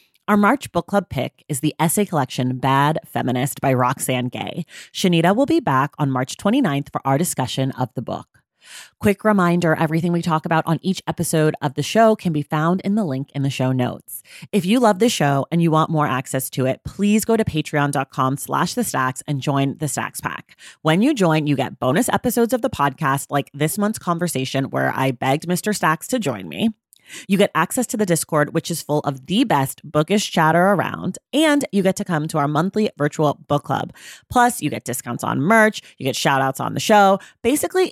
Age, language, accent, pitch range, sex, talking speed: 30-49, English, American, 140-200 Hz, female, 210 wpm